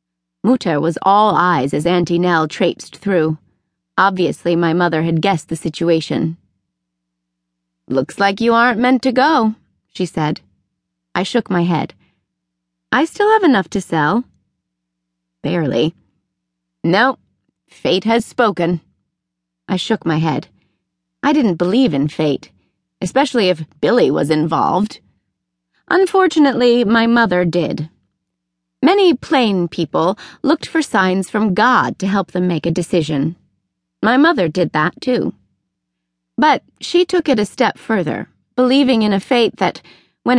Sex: female